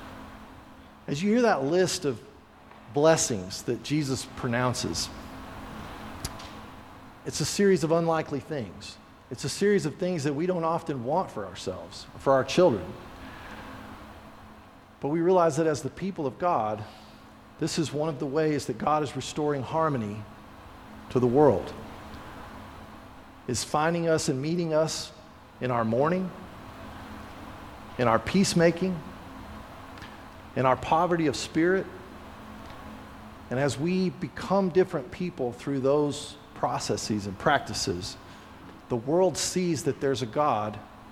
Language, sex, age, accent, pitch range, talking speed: English, male, 40-59, American, 110-155 Hz, 130 wpm